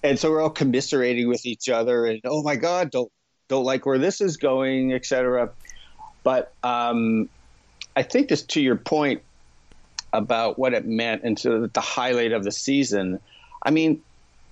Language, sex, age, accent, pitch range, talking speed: English, male, 40-59, American, 105-125 Hz, 175 wpm